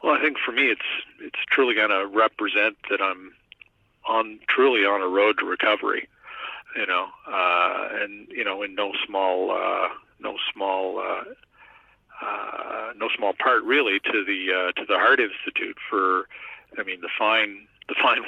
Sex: male